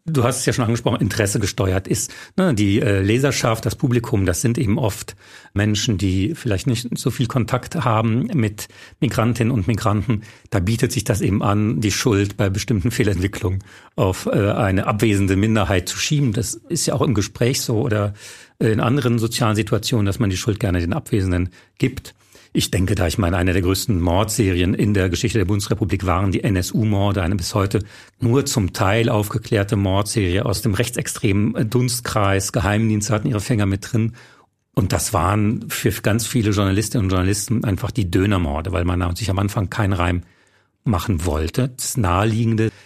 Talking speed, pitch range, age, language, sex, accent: 175 wpm, 100-120 Hz, 40-59, German, male, German